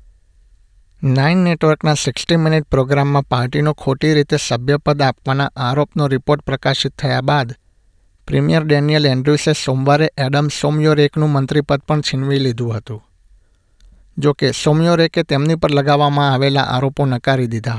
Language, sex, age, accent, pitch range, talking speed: Gujarati, male, 60-79, native, 120-150 Hz, 115 wpm